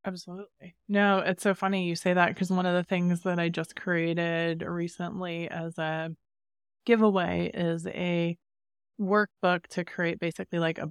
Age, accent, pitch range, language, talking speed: 20-39, American, 170-205 Hz, English, 160 wpm